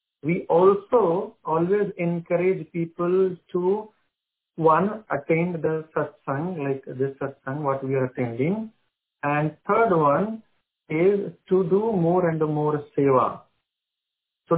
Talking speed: 115 wpm